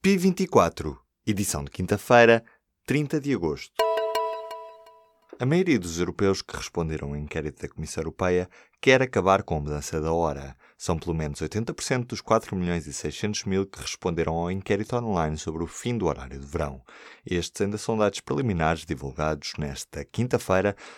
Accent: Brazilian